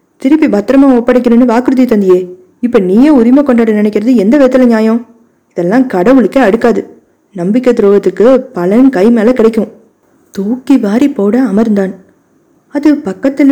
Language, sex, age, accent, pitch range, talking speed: Tamil, female, 20-39, native, 200-255 Hz, 125 wpm